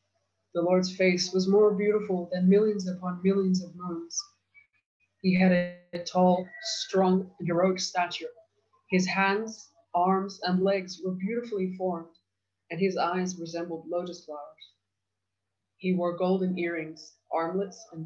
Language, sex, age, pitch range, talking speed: English, female, 20-39, 160-195 Hz, 130 wpm